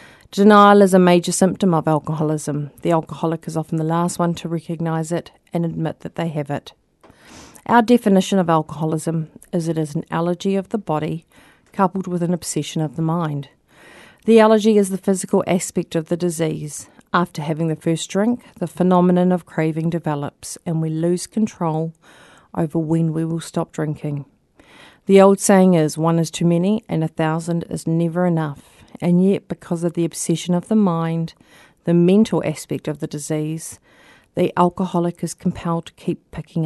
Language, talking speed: English, 175 wpm